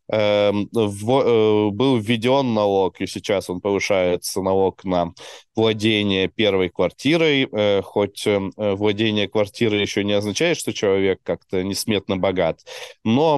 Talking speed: 110 wpm